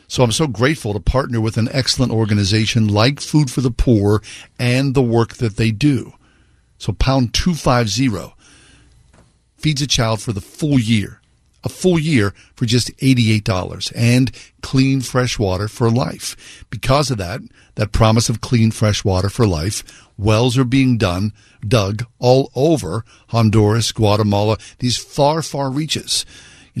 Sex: male